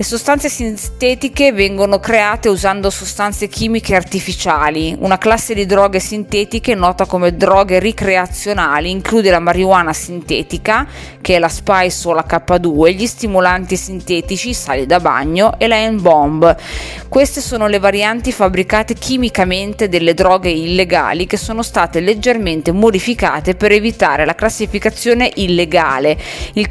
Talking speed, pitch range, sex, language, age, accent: 135 wpm, 175-225 Hz, female, Italian, 20-39, native